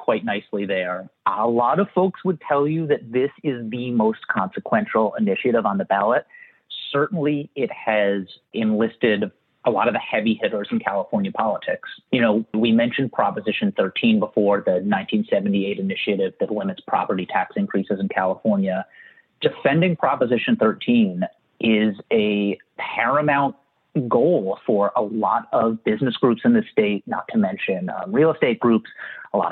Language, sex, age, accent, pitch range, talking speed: English, male, 30-49, American, 105-175 Hz, 150 wpm